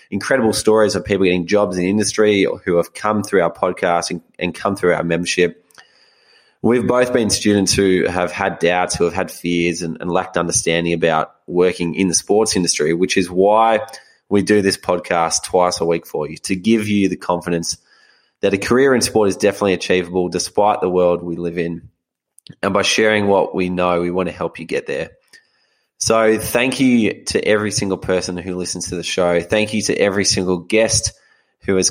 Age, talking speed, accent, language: 20-39, 200 wpm, Australian, English